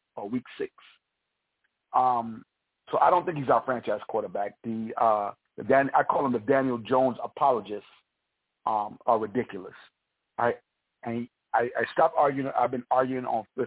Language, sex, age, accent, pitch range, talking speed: English, male, 50-69, American, 120-145 Hz, 165 wpm